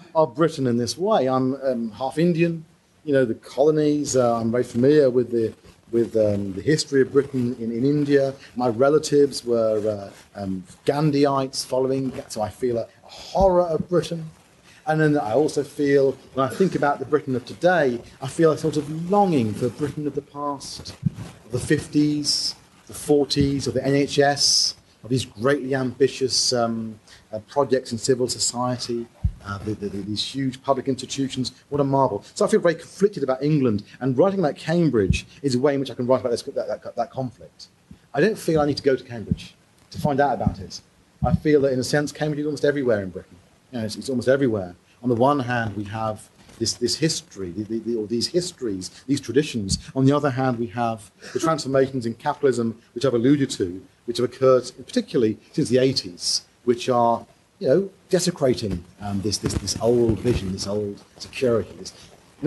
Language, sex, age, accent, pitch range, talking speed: English, male, 40-59, British, 115-145 Hz, 190 wpm